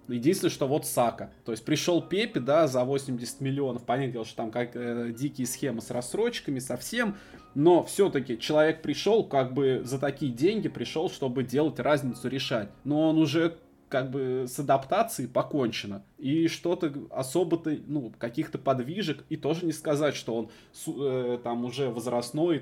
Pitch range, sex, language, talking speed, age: 125-160 Hz, male, Russian, 160 wpm, 20-39